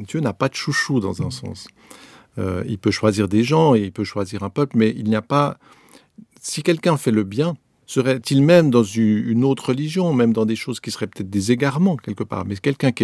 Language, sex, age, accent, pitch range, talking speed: French, male, 50-69, French, 105-135 Hz, 230 wpm